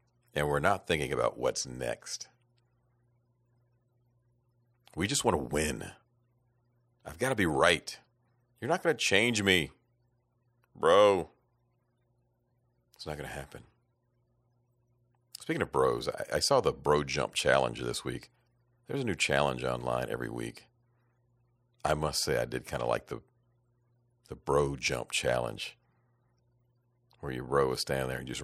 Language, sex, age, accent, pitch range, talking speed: English, male, 50-69, American, 85-120 Hz, 145 wpm